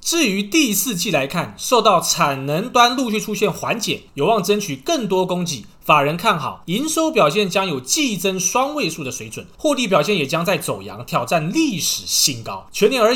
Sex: male